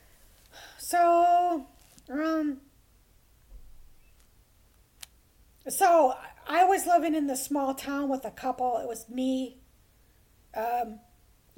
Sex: female